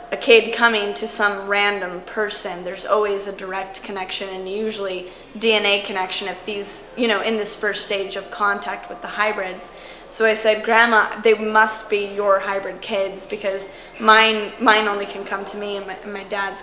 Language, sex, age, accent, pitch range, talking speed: English, female, 20-39, American, 195-220 Hz, 190 wpm